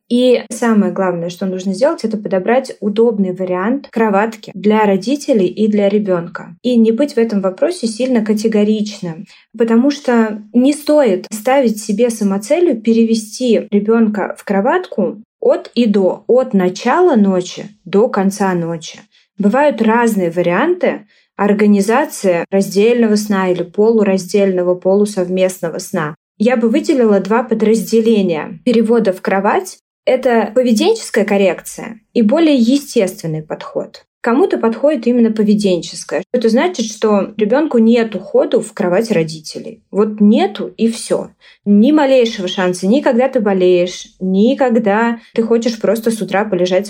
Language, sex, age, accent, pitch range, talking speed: Russian, female, 20-39, native, 195-240 Hz, 125 wpm